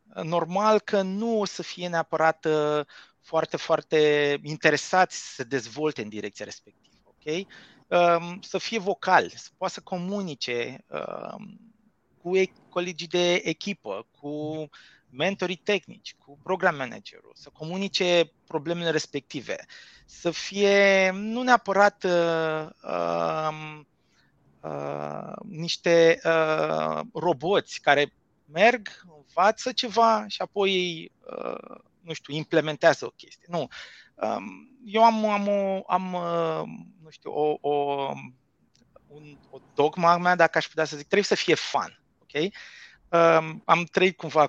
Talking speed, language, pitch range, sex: 125 wpm, Romanian, 145-190 Hz, male